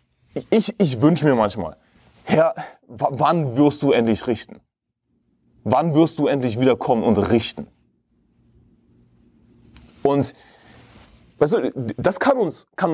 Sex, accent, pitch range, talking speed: male, German, 115-170 Hz, 100 wpm